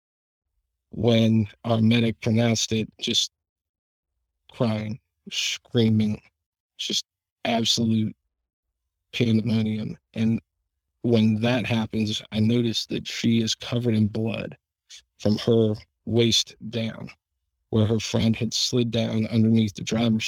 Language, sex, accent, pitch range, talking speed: English, male, American, 100-115 Hz, 105 wpm